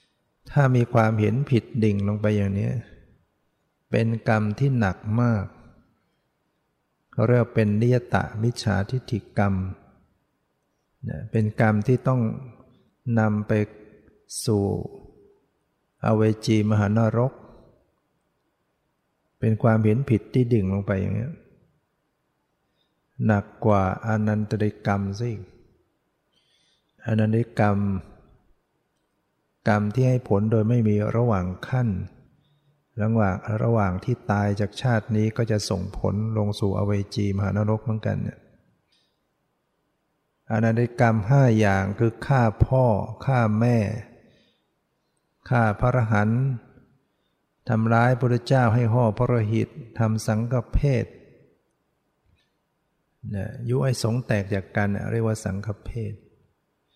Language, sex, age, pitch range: English, male, 60-79, 105-120 Hz